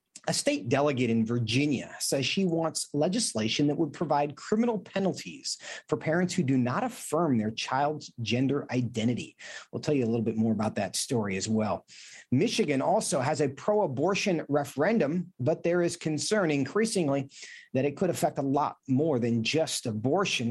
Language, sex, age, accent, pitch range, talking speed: English, male, 40-59, American, 130-205 Hz, 165 wpm